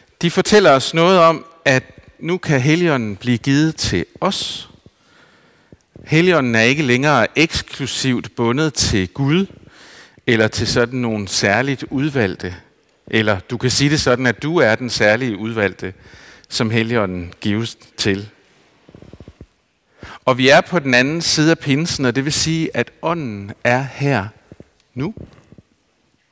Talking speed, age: 140 wpm, 50-69